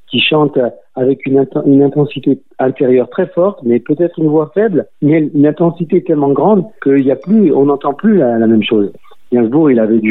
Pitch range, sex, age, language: 120-155 Hz, male, 50-69, French